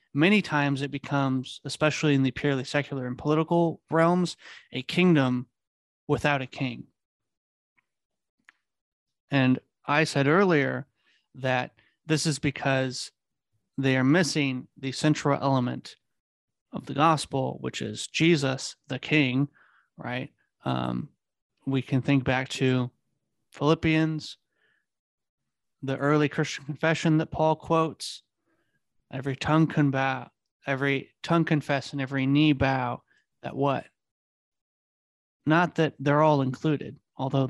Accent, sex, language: American, male, English